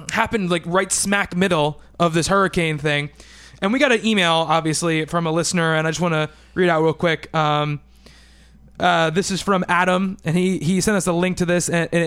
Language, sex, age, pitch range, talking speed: English, male, 20-39, 160-195 Hz, 215 wpm